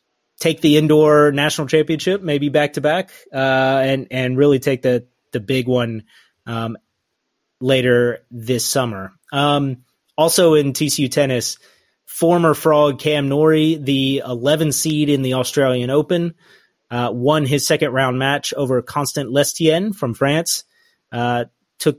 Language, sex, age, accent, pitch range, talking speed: English, male, 30-49, American, 125-150 Hz, 135 wpm